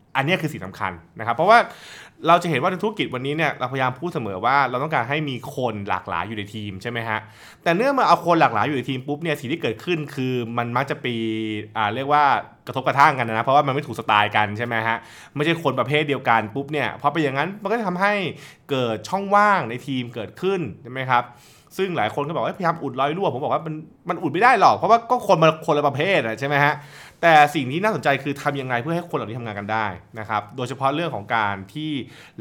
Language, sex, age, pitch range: Thai, male, 20-39, 110-150 Hz